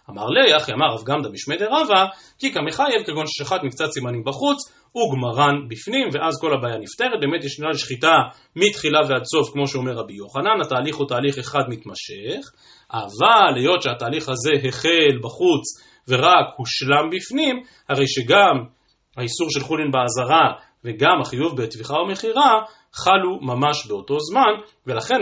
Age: 30-49